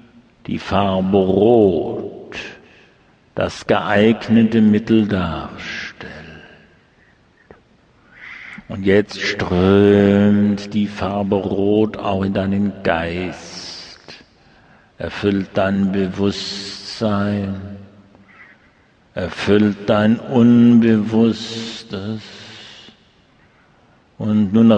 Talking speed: 60 wpm